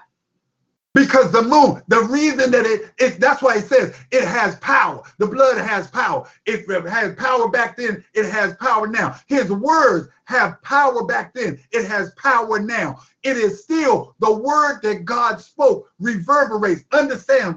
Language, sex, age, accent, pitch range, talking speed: English, male, 50-69, American, 200-270 Hz, 165 wpm